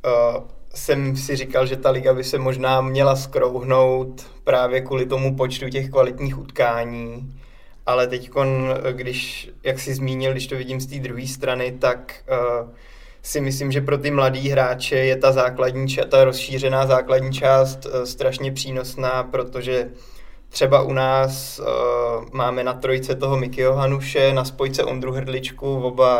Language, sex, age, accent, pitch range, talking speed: Czech, male, 20-39, native, 125-135 Hz, 150 wpm